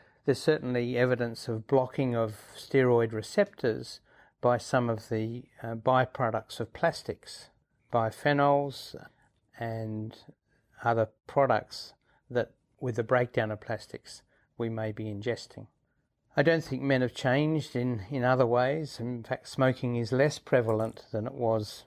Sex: male